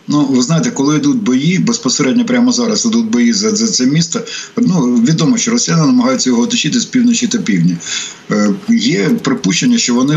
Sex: male